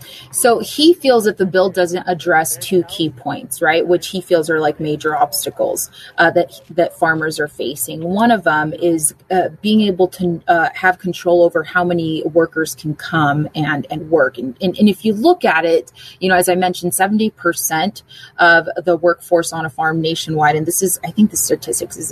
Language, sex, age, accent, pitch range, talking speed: English, female, 30-49, American, 160-190 Hz, 205 wpm